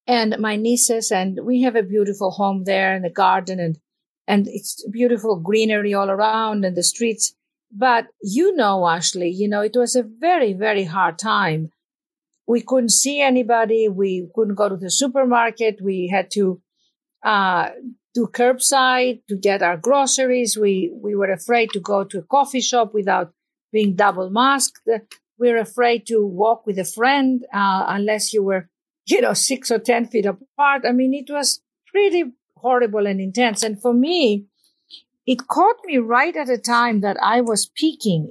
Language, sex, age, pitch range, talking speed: English, female, 50-69, 200-255 Hz, 175 wpm